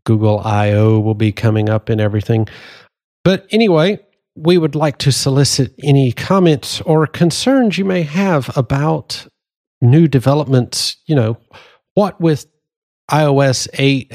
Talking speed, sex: 130 wpm, male